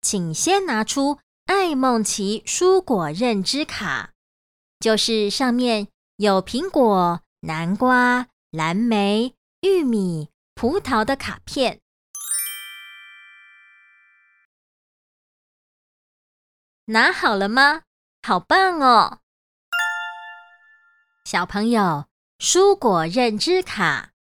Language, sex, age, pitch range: Chinese, male, 30-49, 195-275 Hz